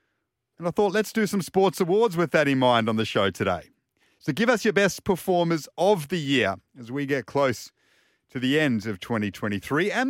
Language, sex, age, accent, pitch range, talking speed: English, male, 40-59, Australian, 120-155 Hz, 210 wpm